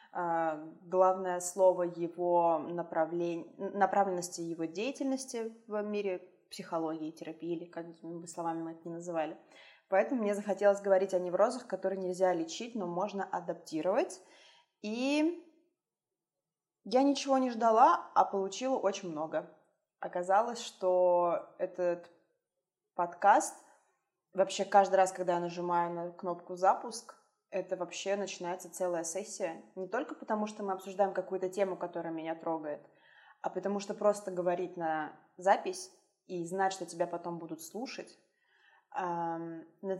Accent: native